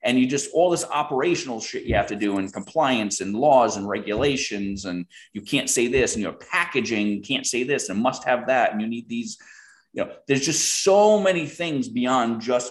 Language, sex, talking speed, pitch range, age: English, male, 215 wpm, 100-150 Hz, 30-49